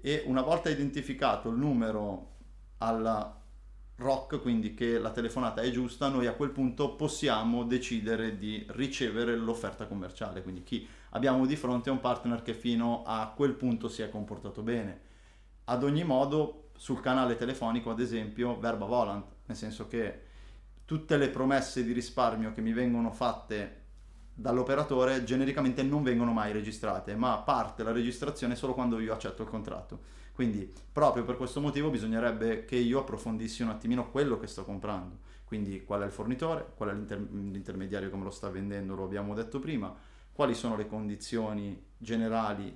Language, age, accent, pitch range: Italian, 30-49, native, 105-125 Hz